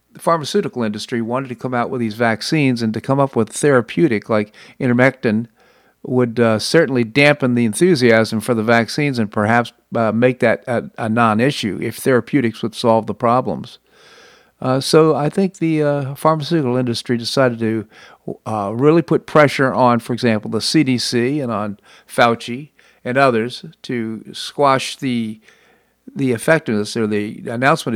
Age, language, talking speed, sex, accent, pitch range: 50-69, English, 155 wpm, male, American, 110-135 Hz